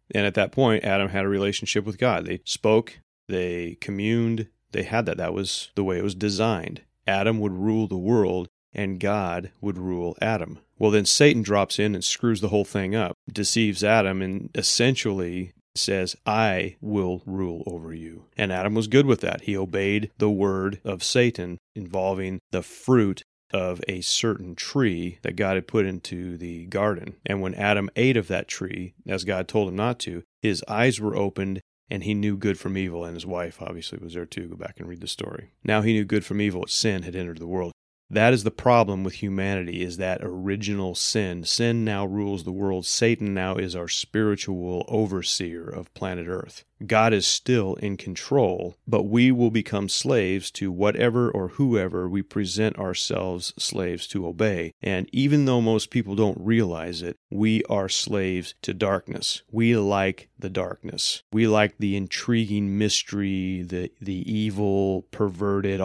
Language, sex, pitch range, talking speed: English, male, 90-110 Hz, 180 wpm